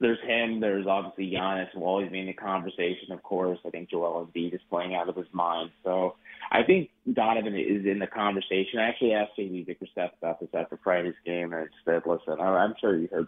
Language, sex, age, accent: English, male, 30-49, American